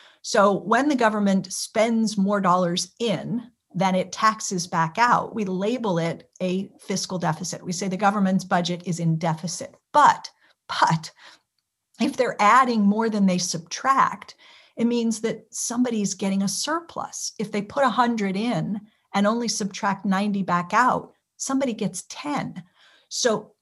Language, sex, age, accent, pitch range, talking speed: English, female, 50-69, American, 180-230 Hz, 145 wpm